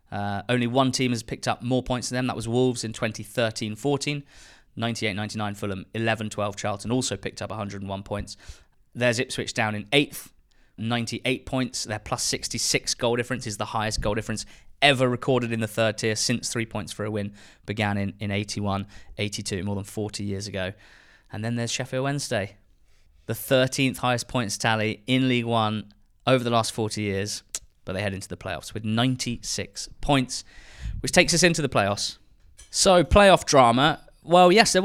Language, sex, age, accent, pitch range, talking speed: English, male, 20-39, British, 105-130 Hz, 175 wpm